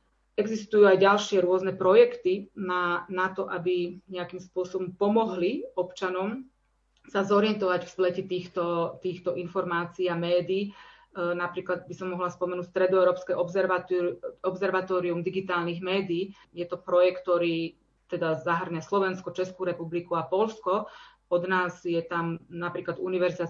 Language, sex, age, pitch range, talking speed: Slovak, female, 30-49, 175-190 Hz, 125 wpm